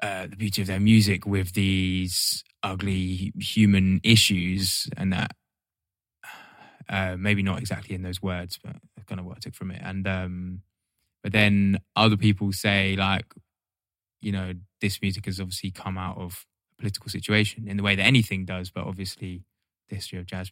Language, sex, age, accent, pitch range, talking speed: English, male, 20-39, British, 95-100 Hz, 175 wpm